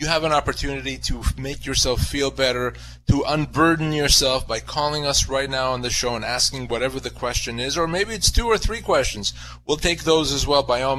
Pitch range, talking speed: 115-140 Hz, 220 wpm